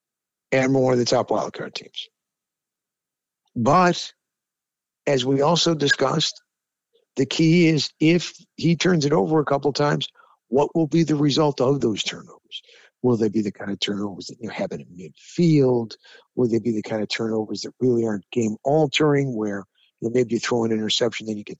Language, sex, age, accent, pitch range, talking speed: English, male, 60-79, American, 115-150 Hz, 190 wpm